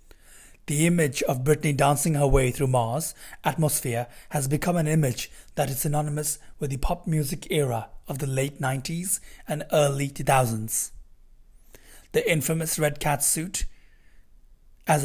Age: 30-49